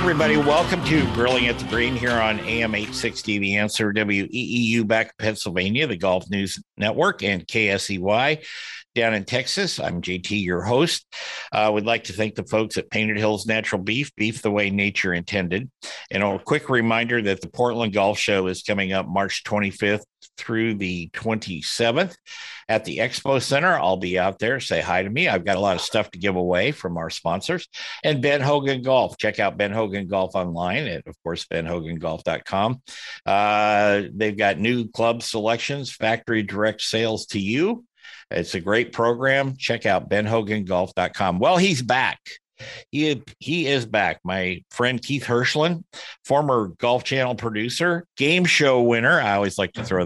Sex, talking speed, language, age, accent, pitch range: male, 175 wpm, English, 50-69, American, 100-125 Hz